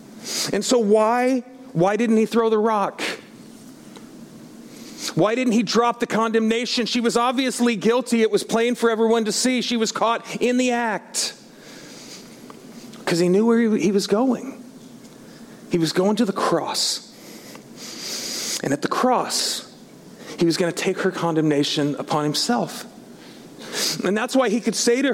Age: 40-59